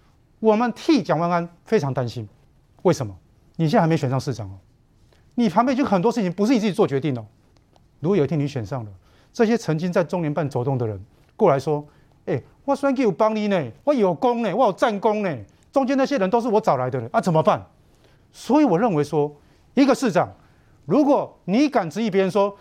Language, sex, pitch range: Chinese, male, 140-235 Hz